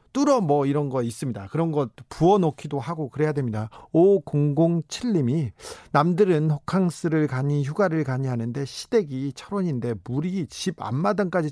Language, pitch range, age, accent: Korean, 130-180 Hz, 40-59, native